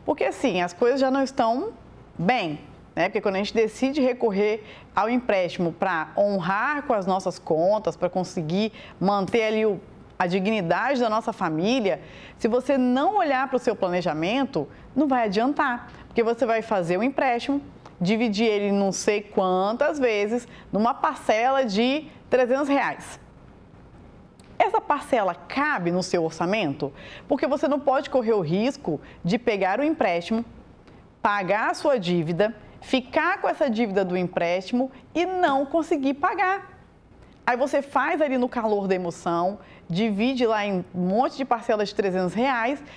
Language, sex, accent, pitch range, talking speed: Portuguese, female, Brazilian, 195-275 Hz, 150 wpm